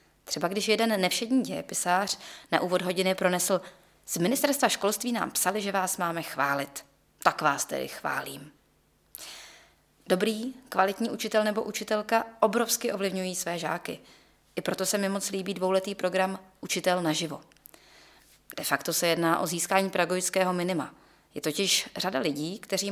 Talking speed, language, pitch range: 140 wpm, Czech, 170-215 Hz